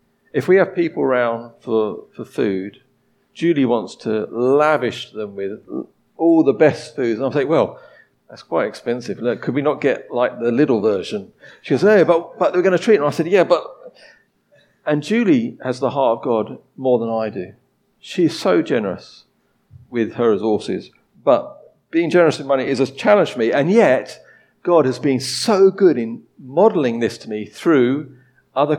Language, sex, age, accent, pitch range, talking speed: English, male, 50-69, British, 120-170 Hz, 190 wpm